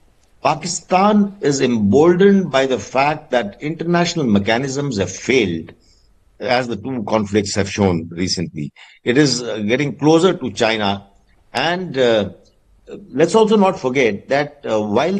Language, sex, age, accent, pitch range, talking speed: English, male, 60-79, Indian, 105-155 Hz, 135 wpm